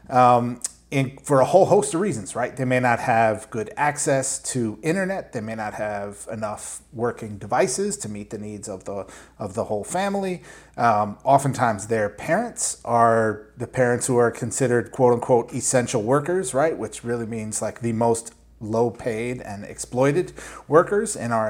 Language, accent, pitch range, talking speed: English, American, 120-150 Hz, 170 wpm